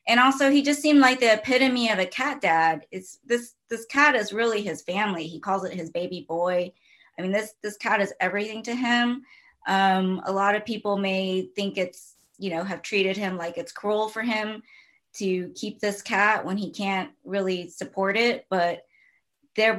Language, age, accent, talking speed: English, 20-39, American, 195 wpm